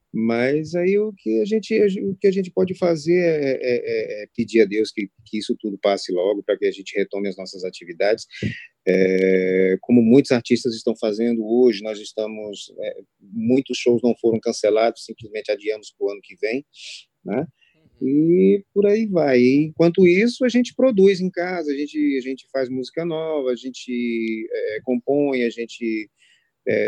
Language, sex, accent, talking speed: Portuguese, male, Brazilian, 180 wpm